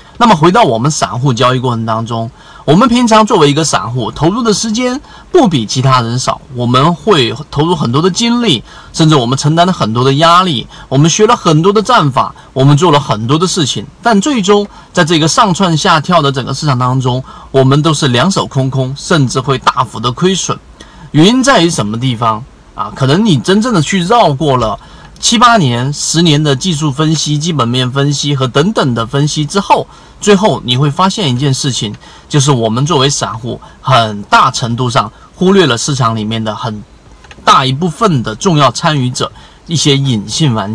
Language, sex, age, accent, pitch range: Chinese, male, 30-49, native, 130-180 Hz